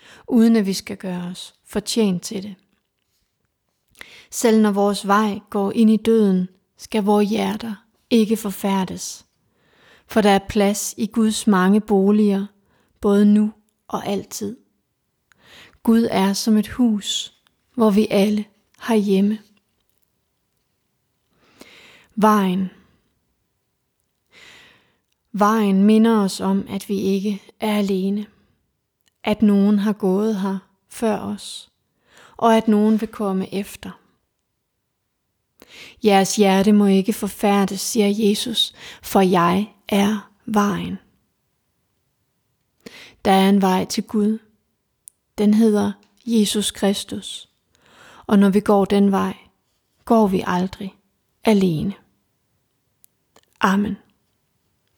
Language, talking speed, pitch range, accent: Danish, 110 wpm, 195-215 Hz, native